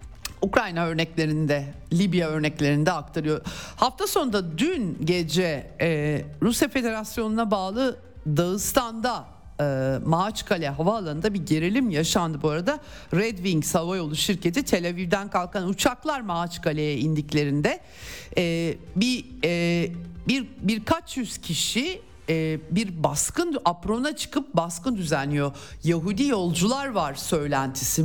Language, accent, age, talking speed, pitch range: Turkish, native, 50-69, 105 wpm, 155-215 Hz